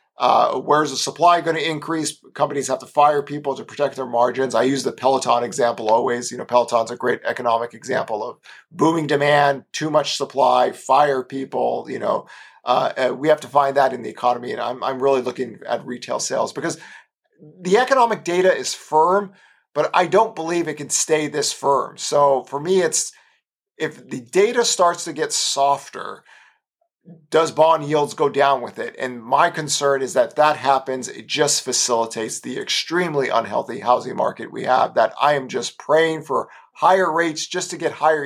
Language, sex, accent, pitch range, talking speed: English, male, American, 130-160 Hz, 185 wpm